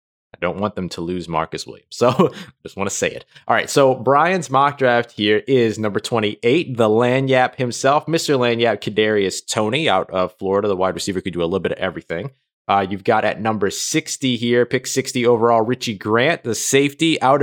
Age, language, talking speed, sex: 20-39, English, 200 wpm, male